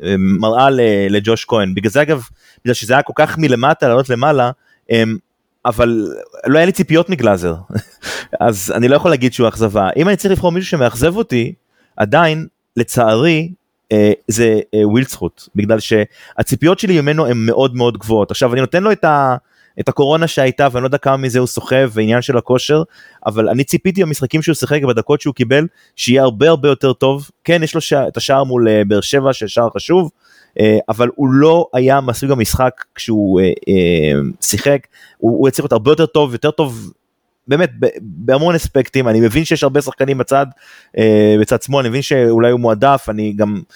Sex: male